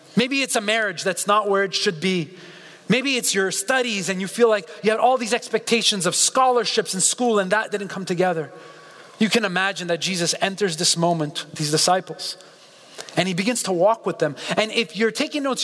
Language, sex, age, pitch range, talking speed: English, male, 30-49, 180-225 Hz, 205 wpm